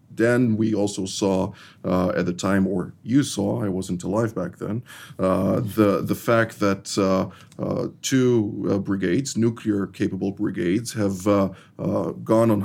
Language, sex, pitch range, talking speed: English, male, 100-115 Hz, 145 wpm